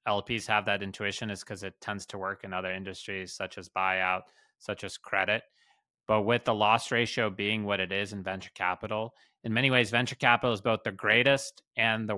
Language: English